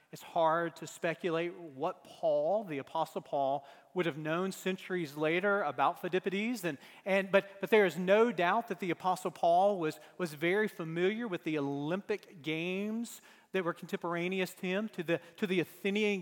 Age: 40-59